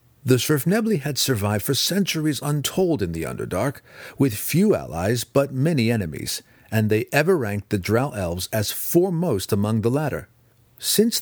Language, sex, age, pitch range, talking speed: English, male, 50-69, 105-140 Hz, 155 wpm